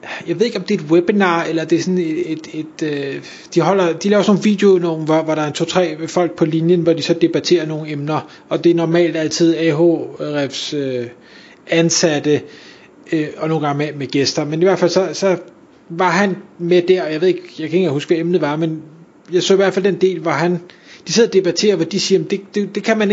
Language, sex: Danish, male